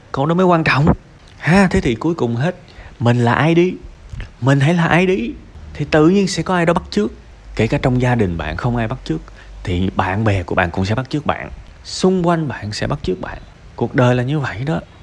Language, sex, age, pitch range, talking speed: Vietnamese, male, 20-39, 100-145 Hz, 250 wpm